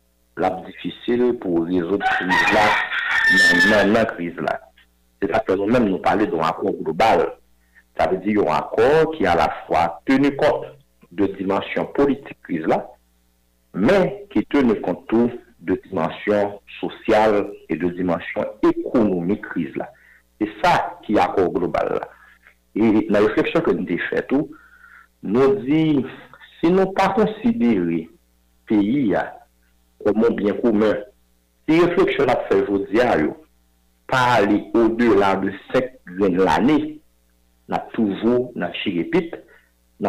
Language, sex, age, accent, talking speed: French, male, 60-79, French, 145 wpm